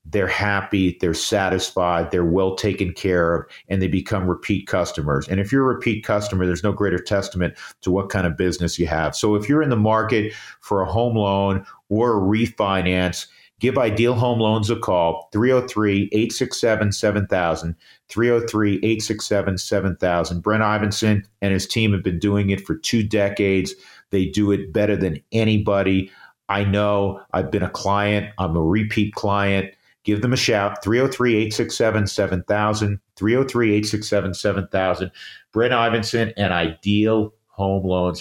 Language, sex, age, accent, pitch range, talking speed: English, male, 50-69, American, 95-110 Hz, 145 wpm